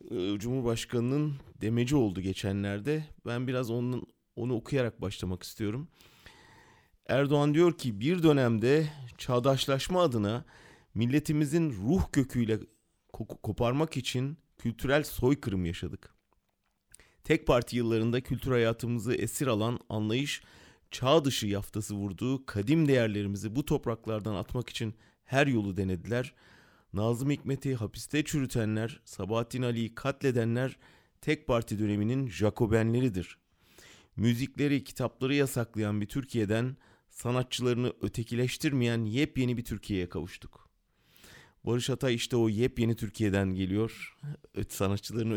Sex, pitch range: male, 105-130 Hz